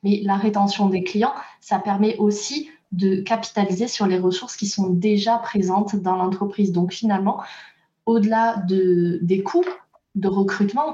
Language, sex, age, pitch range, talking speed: French, female, 20-39, 185-230 Hz, 150 wpm